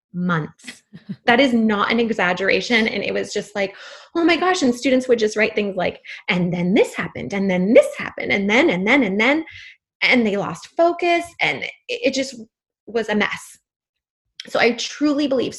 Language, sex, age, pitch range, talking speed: English, female, 20-39, 210-295 Hz, 190 wpm